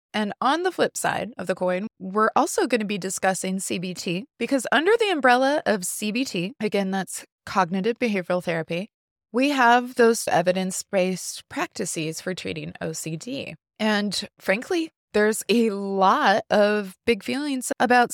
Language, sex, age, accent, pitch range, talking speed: English, female, 20-39, American, 185-255 Hz, 140 wpm